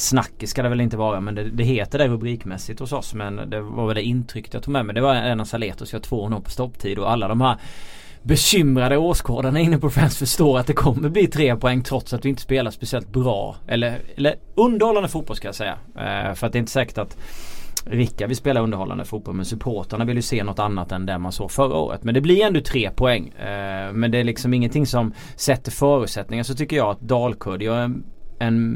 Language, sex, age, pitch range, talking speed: Swedish, male, 30-49, 105-140 Hz, 235 wpm